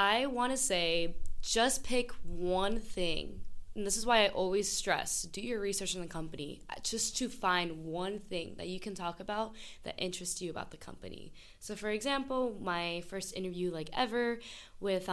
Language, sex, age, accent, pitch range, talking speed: English, female, 10-29, American, 170-210 Hz, 180 wpm